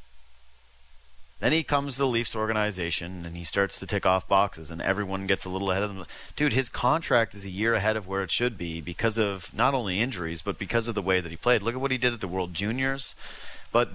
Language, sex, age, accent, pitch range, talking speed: English, male, 30-49, American, 90-140 Hz, 245 wpm